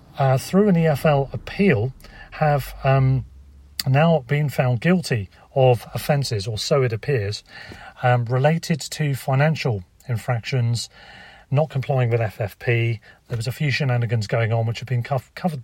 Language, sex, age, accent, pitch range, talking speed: English, male, 40-59, British, 120-145 Hz, 140 wpm